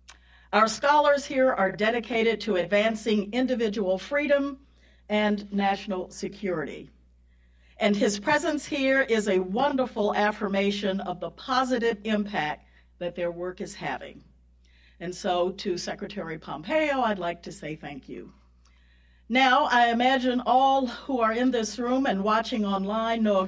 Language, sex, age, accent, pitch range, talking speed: English, female, 50-69, American, 180-240 Hz, 140 wpm